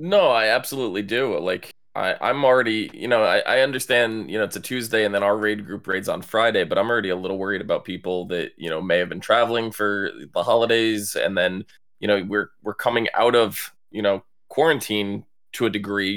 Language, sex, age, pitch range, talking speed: English, male, 20-39, 100-120 Hz, 220 wpm